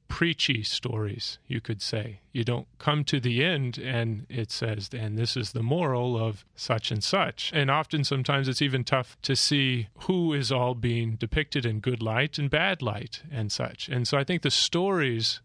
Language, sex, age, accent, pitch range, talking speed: English, male, 30-49, American, 110-135 Hz, 195 wpm